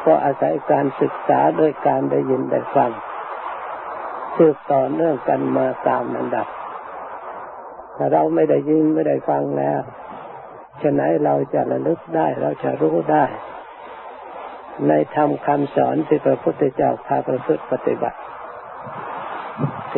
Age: 60-79